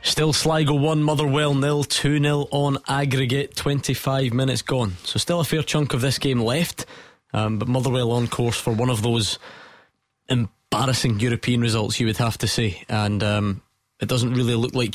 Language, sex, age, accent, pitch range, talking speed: English, male, 20-39, British, 115-140 Hz, 175 wpm